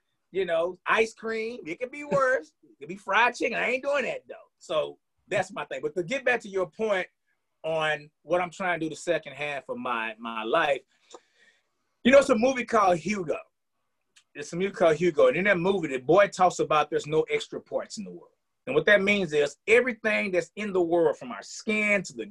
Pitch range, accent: 175-250 Hz, American